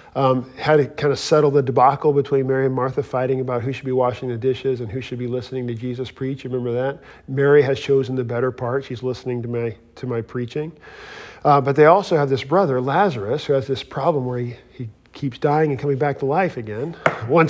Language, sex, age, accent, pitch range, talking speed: English, male, 40-59, American, 125-155 Hz, 235 wpm